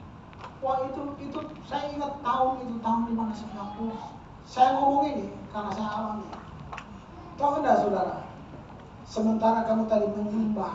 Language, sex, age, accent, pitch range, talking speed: Indonesian, male, 40-59, native, 210-280 Hz, 130 wpm